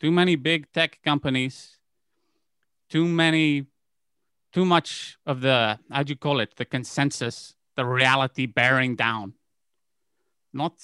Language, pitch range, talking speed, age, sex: English, 125-160 Hz, 125 wpm, 30-49, male